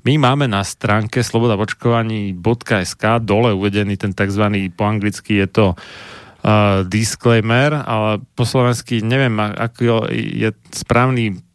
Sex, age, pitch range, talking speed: male, 30-49, 105-120 Hz, 110 wpm